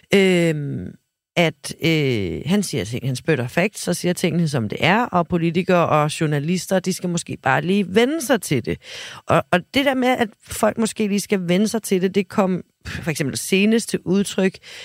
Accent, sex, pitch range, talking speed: native, female, 140-195 Hz, 180 wpm